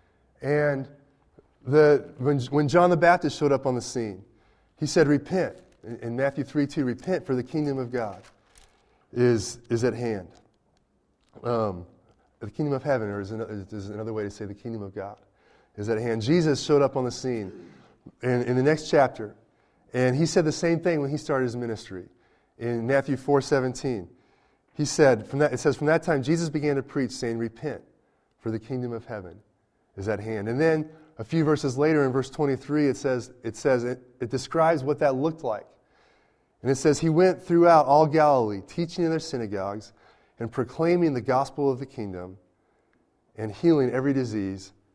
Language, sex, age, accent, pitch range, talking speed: English, male, 30-49, American, 115-150 Hz, 190 wpm